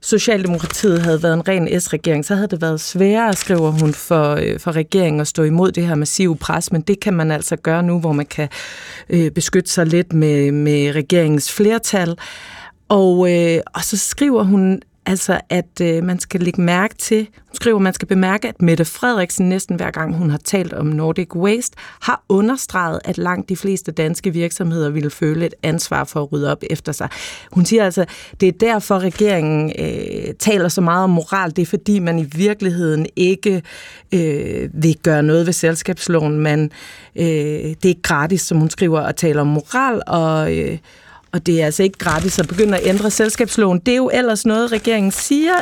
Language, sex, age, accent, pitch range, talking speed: Danish, female, 30-49, native, 160-200 Hz, 195 wpm